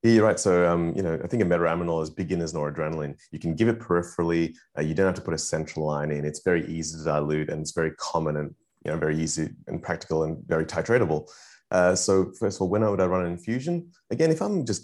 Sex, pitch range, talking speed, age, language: male, 80-95 Hz, 255 wpm, 30-49, English